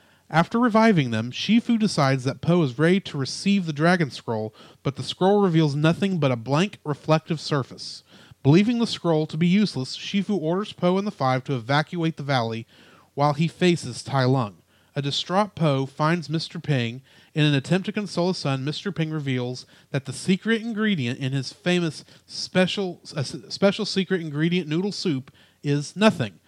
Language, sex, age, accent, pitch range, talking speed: English, male, 30-49, American, 135-185 Hz, 170 wpm